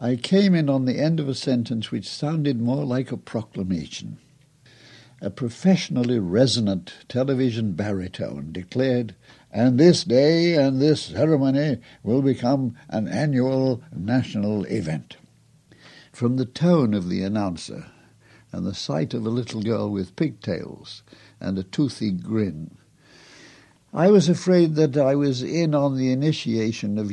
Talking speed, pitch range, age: 140 wpm, 100-135 Hz, 60-79